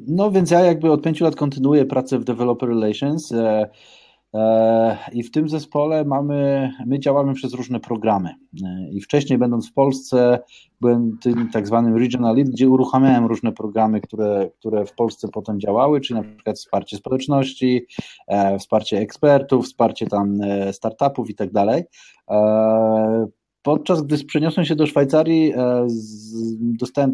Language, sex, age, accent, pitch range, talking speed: Polish, male, 20-39, native, 110-135 Hz, 135 wpm